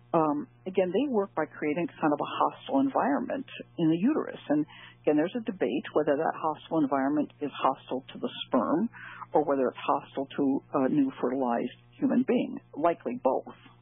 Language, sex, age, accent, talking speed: English, female, 60-79, American, 175 wpm